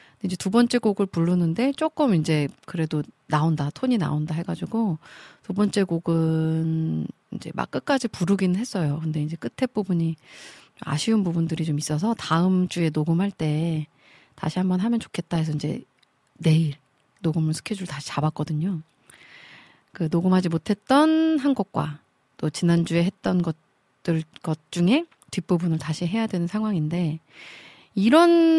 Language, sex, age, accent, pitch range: Korean, female, 40-59, native, 155-205 Hz